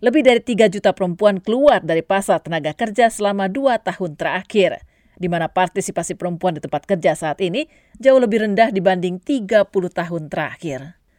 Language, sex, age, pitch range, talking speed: Indonesian, female, 40-59, 175-205 Hz, 160 wpm